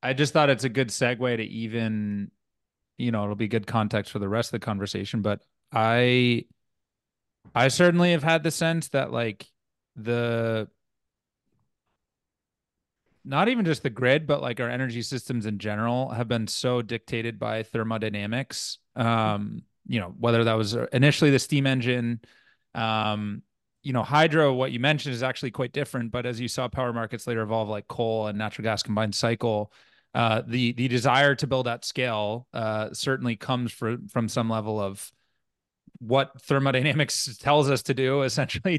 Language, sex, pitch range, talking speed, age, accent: English, male, 110-135 Hz, 170 wpm, 30-49, American